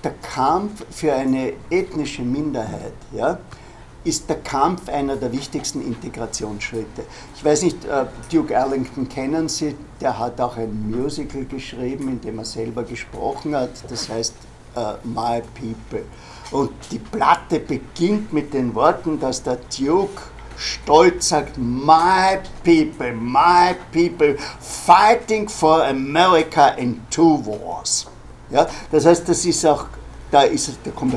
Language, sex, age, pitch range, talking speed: German, male, 60-79, 120-155 Hz, 125 wpm